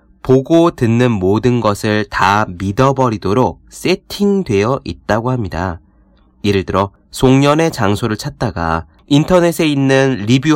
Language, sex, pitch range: Korean, male, 85-125 Hz